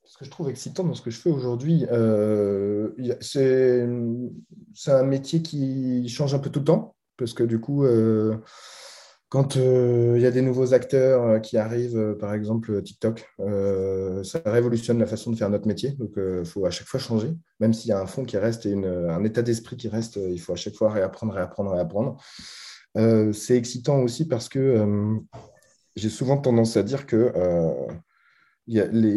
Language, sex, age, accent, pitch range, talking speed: French, male, 20-39, French, 110-135 Hz, 185 wpm